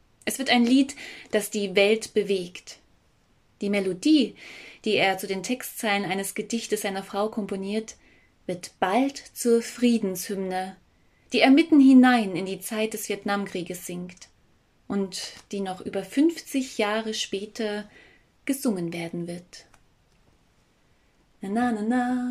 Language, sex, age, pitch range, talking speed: German, female, 30-49, 195-250 Hz, 125 wpm